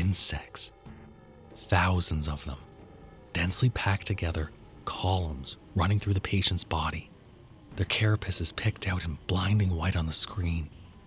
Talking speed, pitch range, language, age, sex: 125 wpm, 85-110 Hz, English, 30-49, male